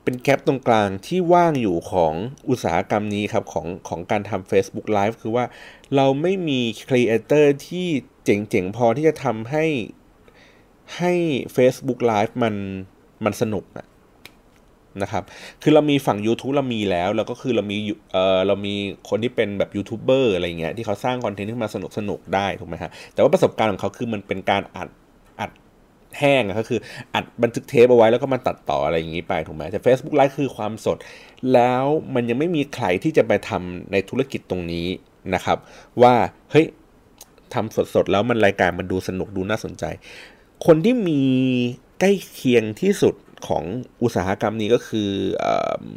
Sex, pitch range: male, 100-135 Hz